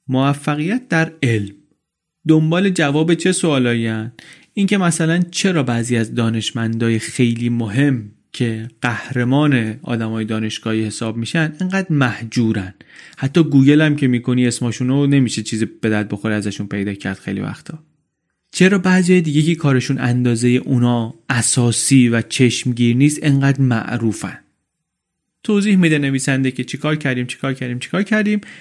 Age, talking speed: 30-49, 130 wpm